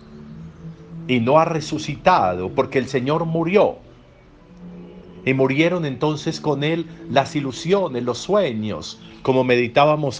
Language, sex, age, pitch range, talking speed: Spanish, male, 50-69, 100-160 Hz, 110 wpm